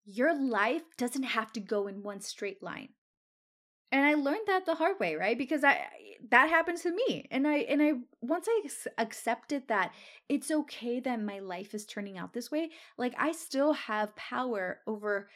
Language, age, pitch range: English, 20-39, 205-270 Hz